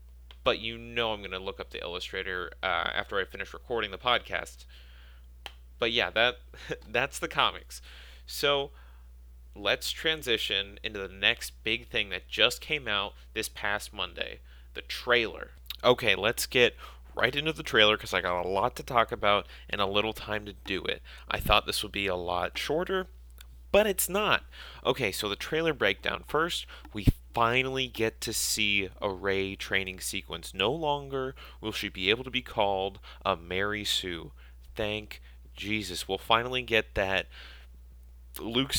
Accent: American